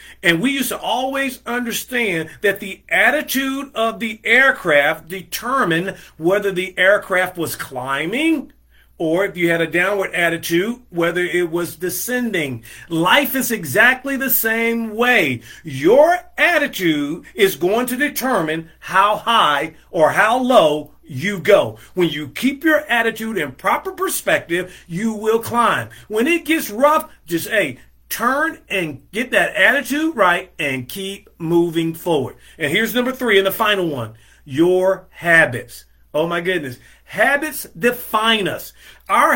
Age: 40-59